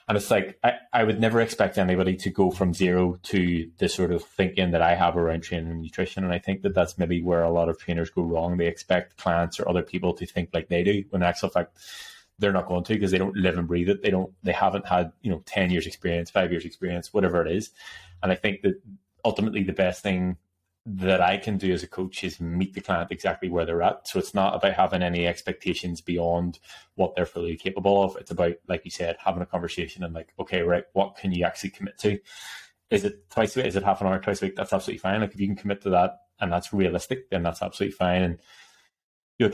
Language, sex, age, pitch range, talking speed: English, male, 20-39, 85-100 Hz, 250 wpm